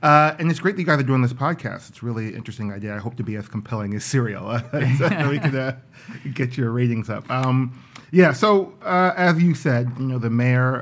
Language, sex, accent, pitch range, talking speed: English, male, American, 105-130 Hz, 240 wpm